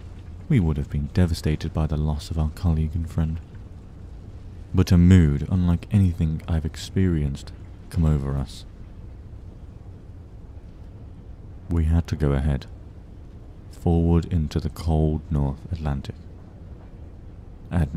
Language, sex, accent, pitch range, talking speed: English, male, British, 85-95 Hz, 115 wpm